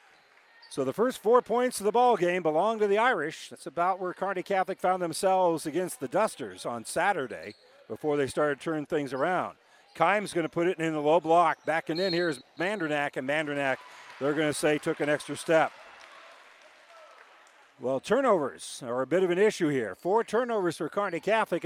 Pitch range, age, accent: 150-195 Hz, 50-69, American